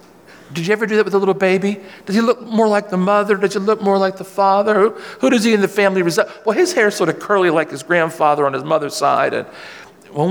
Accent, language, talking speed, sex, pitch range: American, English, 270 wpm, male, 135-195 Hz